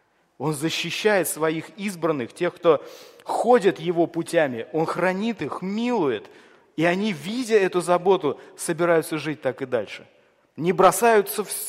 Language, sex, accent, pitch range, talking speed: Russian, male, native, 135-185 Hz, 130 wpm